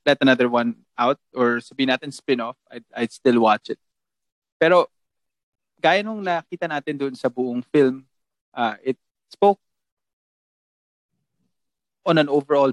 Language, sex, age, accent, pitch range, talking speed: Filipino, male, 20-39, native, 120-150 Hz, 130 wpm